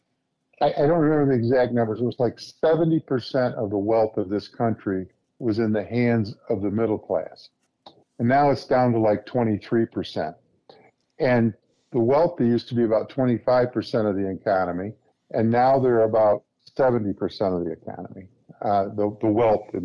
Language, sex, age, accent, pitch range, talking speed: English, male, 50-69, American, 100-120 Hz, 165 wpm